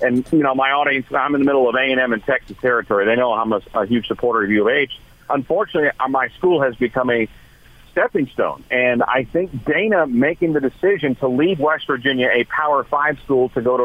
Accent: American